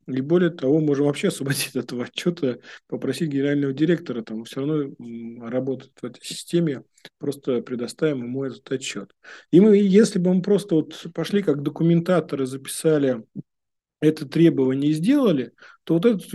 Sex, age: male, 40-59